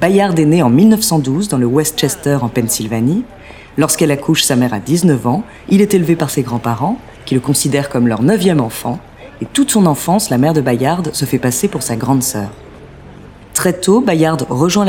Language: French